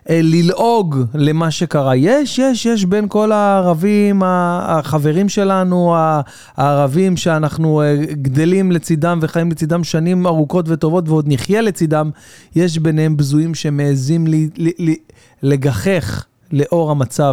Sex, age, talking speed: male, 30-49, 105 wpm